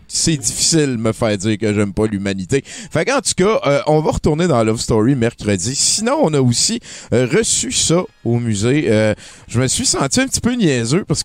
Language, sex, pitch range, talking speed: French, male, 115-160 Hz, 220 wpm